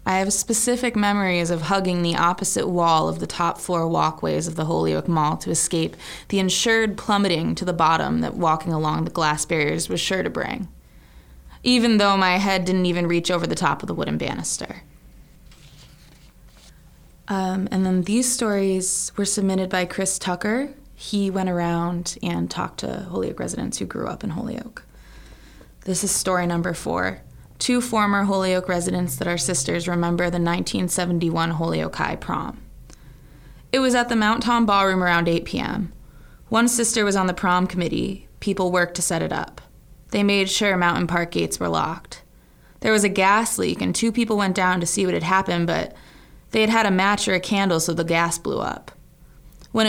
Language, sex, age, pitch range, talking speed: English, female, 20-39, 170-200 Hz, 185 wpm